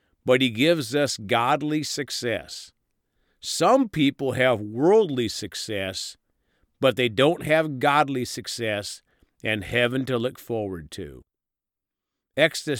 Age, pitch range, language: 50-69, 110-150 Hz, English